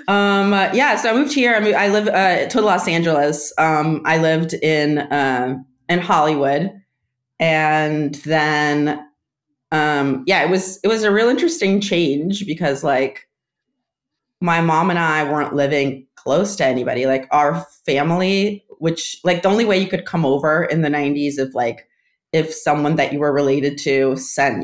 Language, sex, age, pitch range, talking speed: English, female, 30-49, 135-170 Hz, 170 wpm